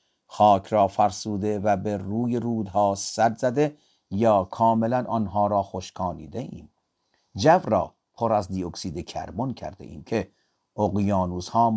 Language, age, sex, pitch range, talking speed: Persian, 50-69, male, 95-115 Hz, 125 wpm